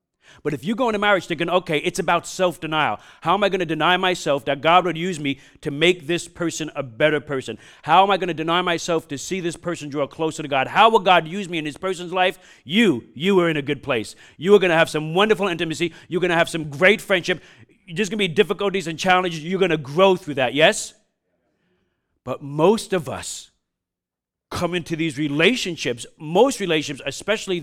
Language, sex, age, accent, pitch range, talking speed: English, male, 40-59, American, 125-175 Hz, 220 wpm